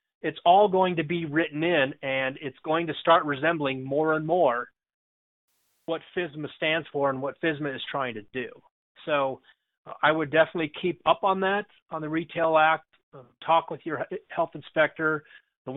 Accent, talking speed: American, 170 wpm